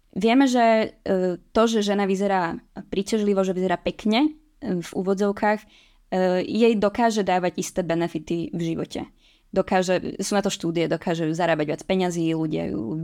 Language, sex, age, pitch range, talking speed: Czech, female, 20-39, 175-200 Hz, 140 wpm